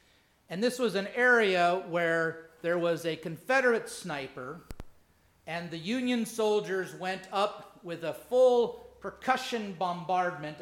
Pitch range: 165-230 Hz